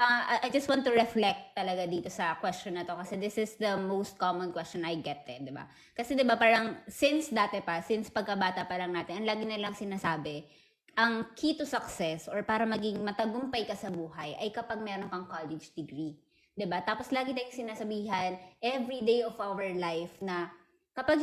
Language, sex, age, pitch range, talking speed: Filipino, female, 20-39, 185-245 Hz, 195 wpm